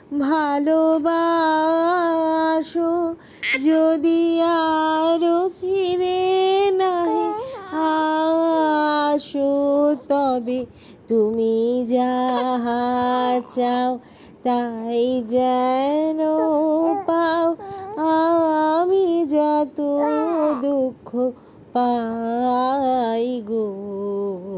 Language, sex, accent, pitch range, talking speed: Bengali, female, native, 225-310 Hz, 40 wpm